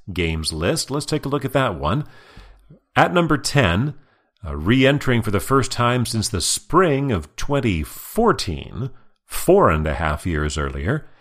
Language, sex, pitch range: English, male, 85-130 Hz